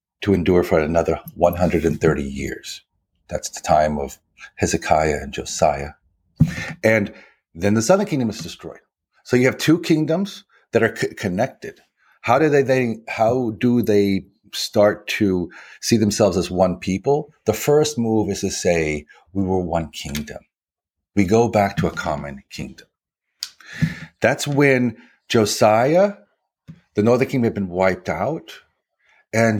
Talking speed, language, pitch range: 140 wpm, English, 90-125 Hz